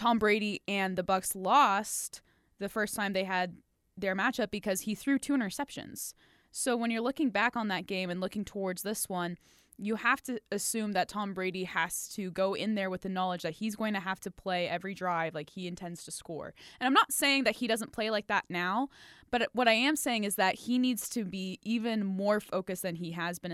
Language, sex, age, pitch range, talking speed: English, female, 10-29, 185-235 Hz, 225 wpm